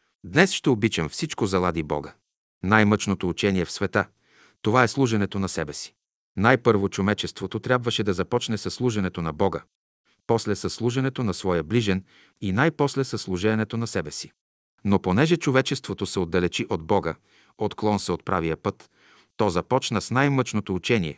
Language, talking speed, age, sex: Bulgarian, 160 wpm, 50-69, male